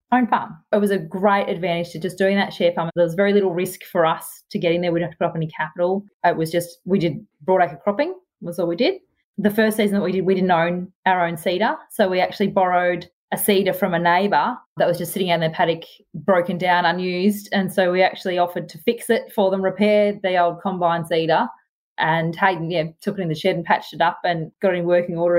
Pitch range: 165-195 Hz